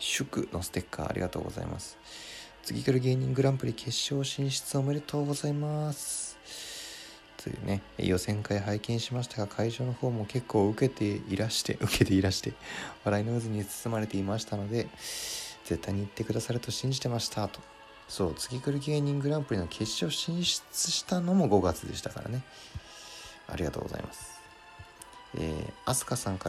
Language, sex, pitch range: Japanese, male, 100-125 Hz